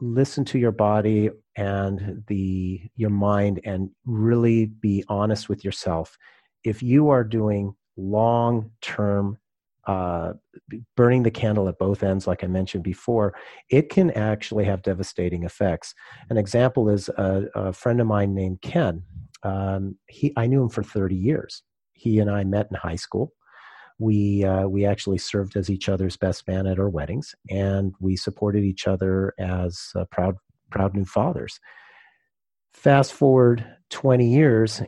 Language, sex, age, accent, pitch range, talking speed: English, male, 40-59, American, 95-115 Hz, 155 wpm